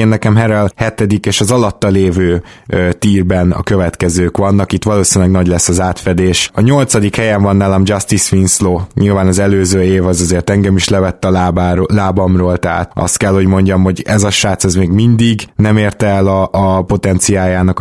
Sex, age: male, 20-39